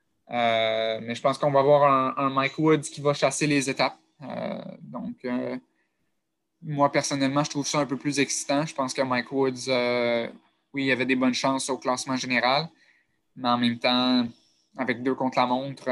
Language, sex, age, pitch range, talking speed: French, male, 20-39, 125-140 Hz, 195 wpm